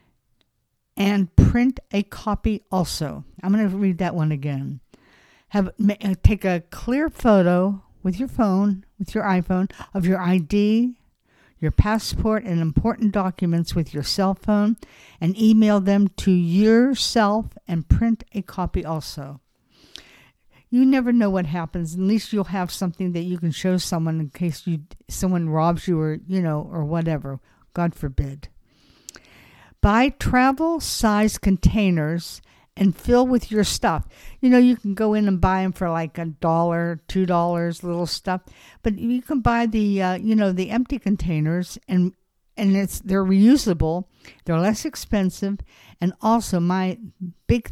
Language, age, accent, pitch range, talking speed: English, 60-79, American, 170-210 Hz, 155 wpm